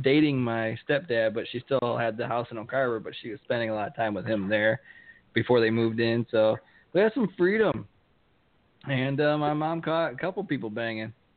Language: English